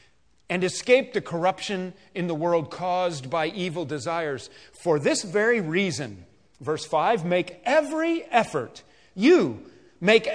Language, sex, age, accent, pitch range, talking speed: English, male, 40-59, American, 180-265 Hz, 130 wpm